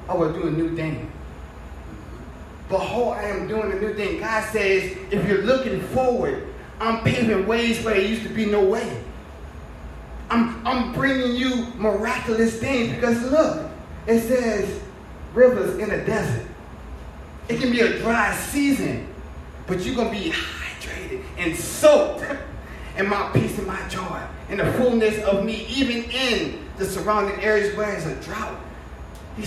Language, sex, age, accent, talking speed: English, male, 30-49, American, 160 wpm